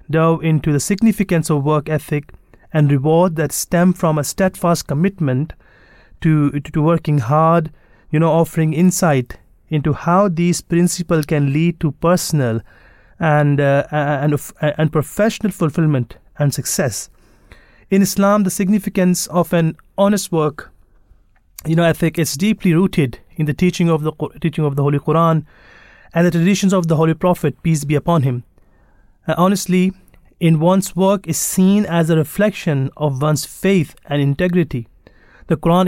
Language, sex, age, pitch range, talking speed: English, male, 30-49, 150-180 Hz, 150 wpm